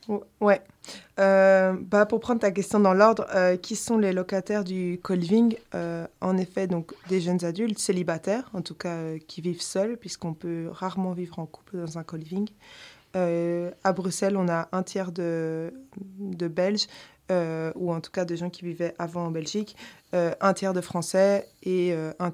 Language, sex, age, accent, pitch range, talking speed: French, female, 20-39, French, 170-195 Hz, 190 wpm